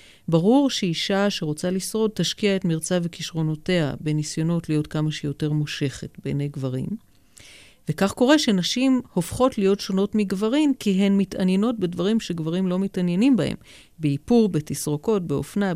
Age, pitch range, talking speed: 50-69, 155-200 Hz, 125 wpm